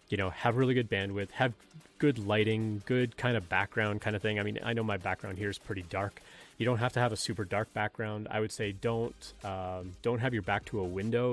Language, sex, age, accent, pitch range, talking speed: English, male, 30-49, American, 95-110 Hz, 250 wpm